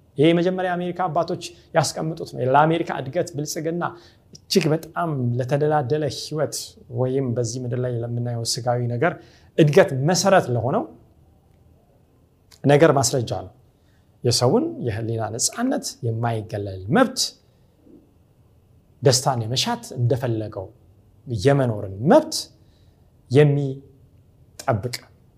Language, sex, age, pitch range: Amharic, male, 30-49, 115-155 Hz